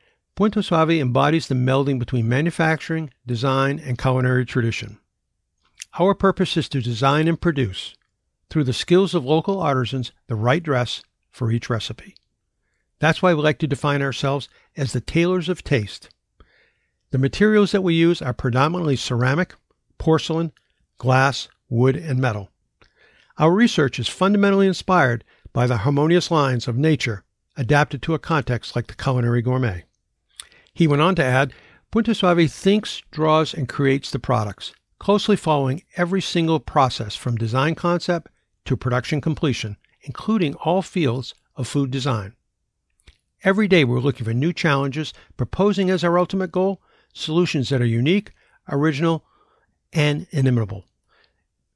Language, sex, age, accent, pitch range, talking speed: English, male, 60-79, American, 125-170 Hz, 145 wpm